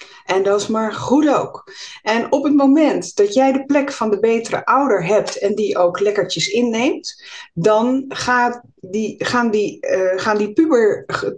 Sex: female